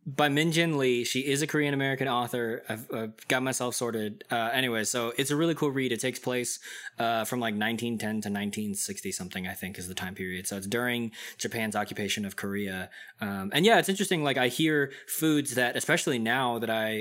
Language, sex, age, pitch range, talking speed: English, male, 20-39, 105-130 Hz, 210 wpm